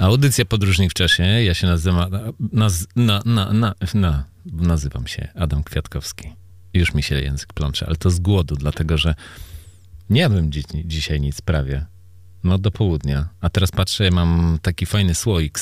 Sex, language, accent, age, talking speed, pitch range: male, Polish, native, 40-59, 170 wpm, 80-95 Hz